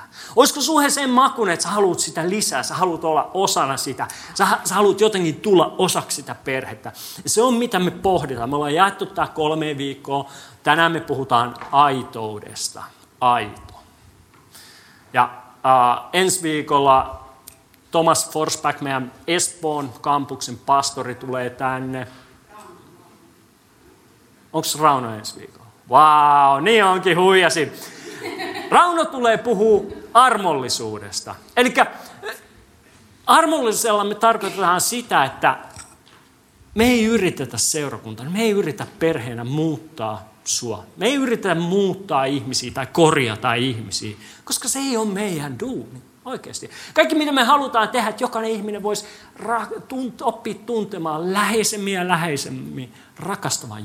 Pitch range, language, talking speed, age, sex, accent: 130-210 Hz, Finnish, 120 wpm, 30-49, male, native